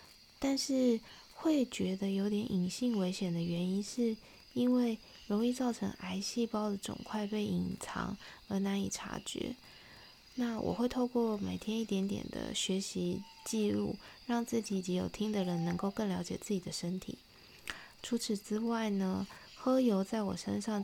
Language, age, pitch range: Chinese, 20-39, 190-230 Hz